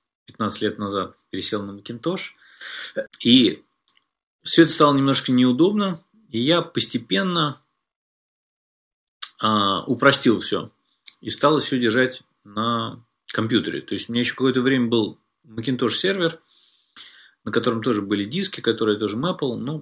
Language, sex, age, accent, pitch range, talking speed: Russian, male, 30-49, native, 110-135 Hz, 135 wpm